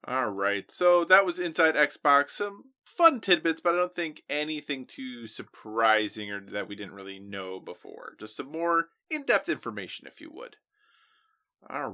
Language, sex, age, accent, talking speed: English, male, 20-39, American, 165 wpm